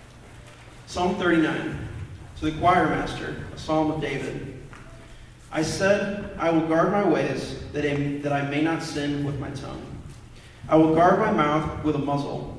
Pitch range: 135-165 Hz